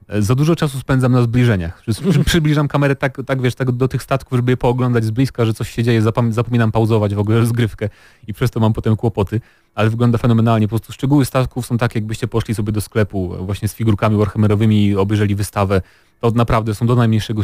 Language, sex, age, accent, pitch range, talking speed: Polish, male, 30-49, native, 105-125 Hz, 210 wpm